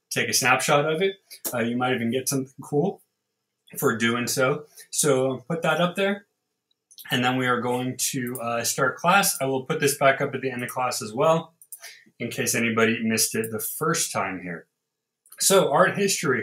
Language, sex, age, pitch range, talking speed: English, male, 20-39, 115-165 Hz, 195 wpm